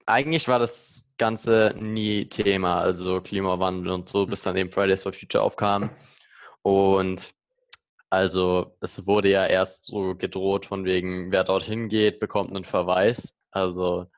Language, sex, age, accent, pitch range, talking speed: German, male, 20-39, German, 95-115 Hz, 145 wpm